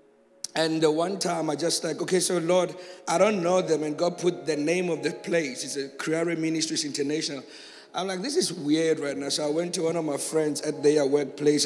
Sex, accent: male, South African